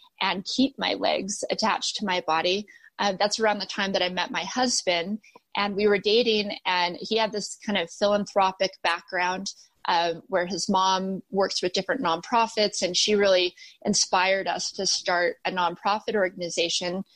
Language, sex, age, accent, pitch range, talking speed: English, female, 20-39, American, 190-225 Hz, 170 wpm